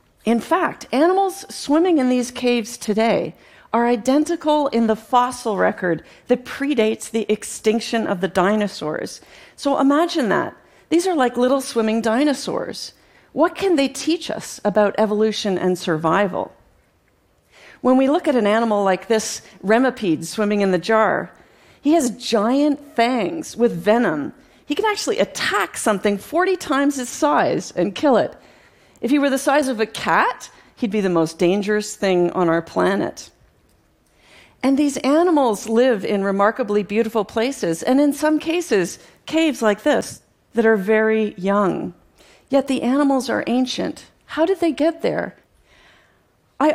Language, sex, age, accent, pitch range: Japanese, female, 40-59, American, 210-285 Hz